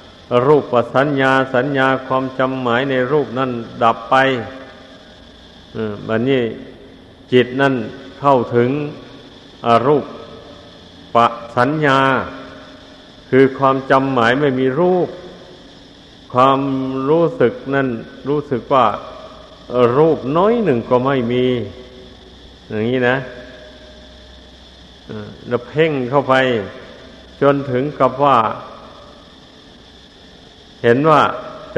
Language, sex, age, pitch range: Thai, male, 60-79, 120-135 Hz